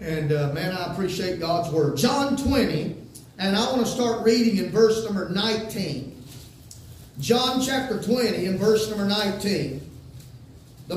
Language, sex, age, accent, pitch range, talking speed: English, male, 40-59, American, 185-240 Hz, 150 wpm